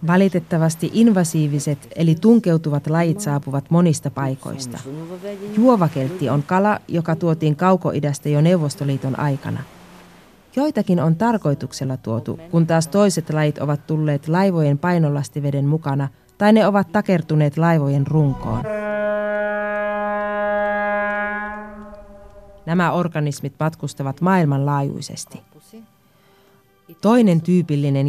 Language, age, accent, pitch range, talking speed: Finnish, 30-49, native, 145-195 Hz, 90 wpm